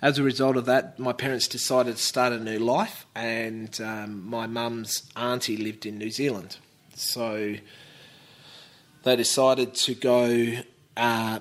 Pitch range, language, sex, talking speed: 105-125 Hz, English, male, 145 wpm